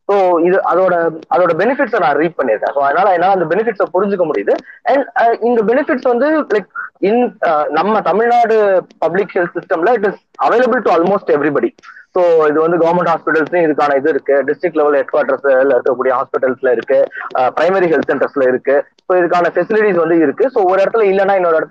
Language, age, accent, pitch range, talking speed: Tamil, 20-39, native, 160-225 Hz, 125 wpm